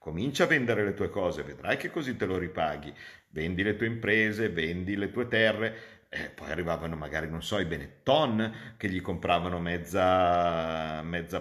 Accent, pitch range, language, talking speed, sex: native, 80-100 Hz, Italian, 175 wpm, male